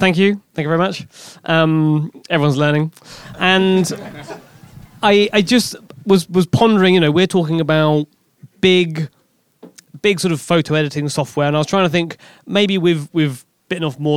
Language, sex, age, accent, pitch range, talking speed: English, male, 20-39, British, 135-170 Hz, 170 wpm